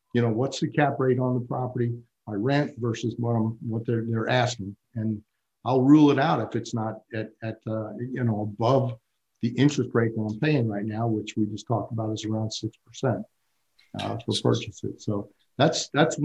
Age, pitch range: 50-69, 110-135 Hz